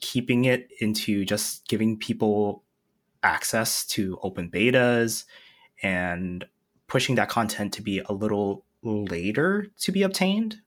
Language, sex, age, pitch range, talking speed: English, male, 20-39, 90-115 Hz, 125 wpm